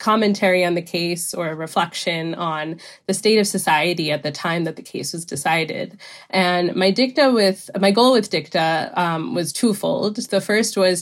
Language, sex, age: English, female, 20-39